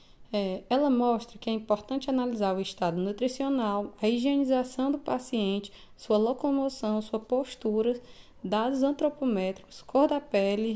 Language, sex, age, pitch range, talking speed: Portuguese, female, 20-39, 210-265 Hz, 125 wpm